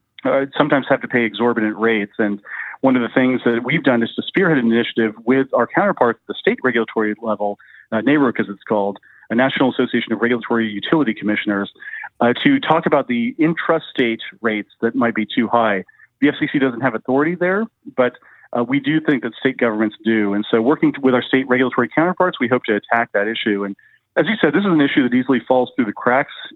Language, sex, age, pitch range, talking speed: English, male, 40-59, 110-135 Hz, 215 wpm